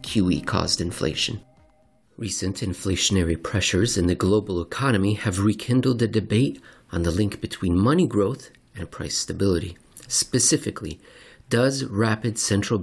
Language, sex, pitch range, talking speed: English, male, 95-120 Hz, 125 wpm